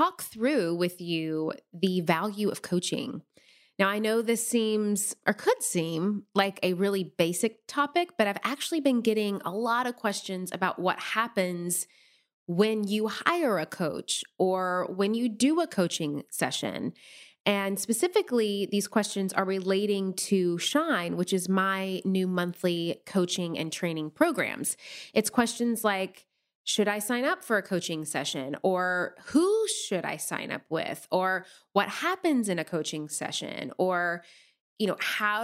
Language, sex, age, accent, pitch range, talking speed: English, female, 20-39, American, 185-240 Hz, 155 wpm